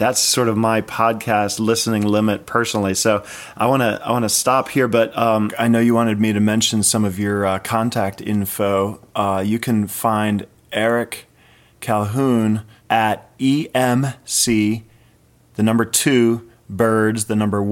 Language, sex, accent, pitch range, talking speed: English, male, American, 105-115 Hz, 150 wpm